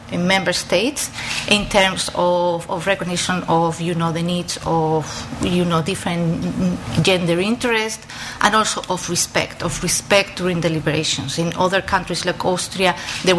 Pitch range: 165-195 Hz